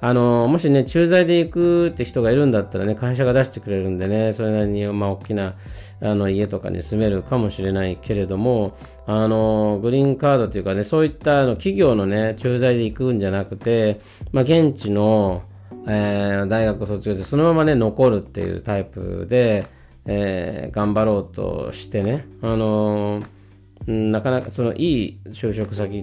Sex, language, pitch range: male, Japanese, 95-120 Hz